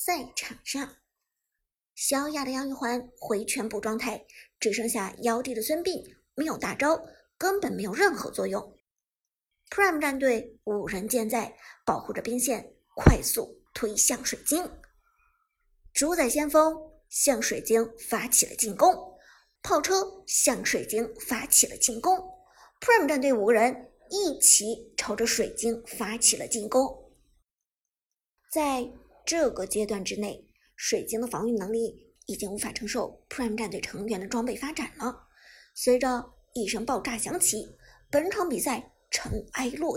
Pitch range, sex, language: 230-330 Hz, male, Chinese